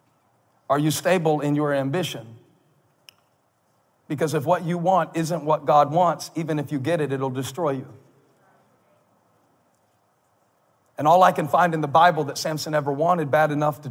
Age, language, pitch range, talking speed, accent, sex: 40-59, English, 145-180 Hz, 165 wpm, American, male